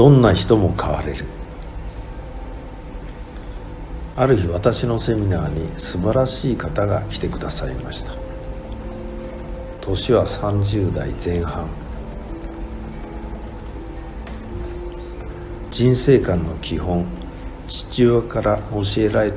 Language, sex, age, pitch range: Japanese, male, 60-79, 85-110 Hz